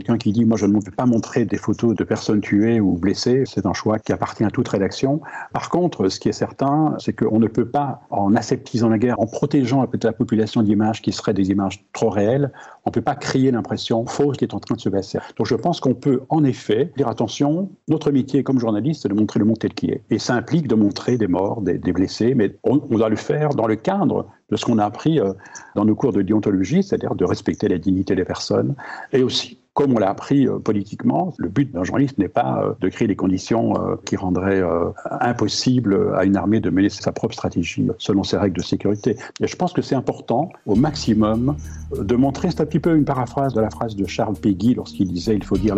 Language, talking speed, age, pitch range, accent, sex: French, 240 wpm, 50-69, 100-130 Hz, French, male